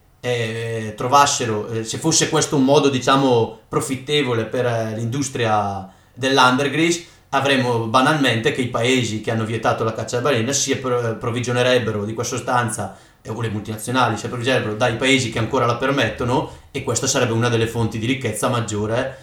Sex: male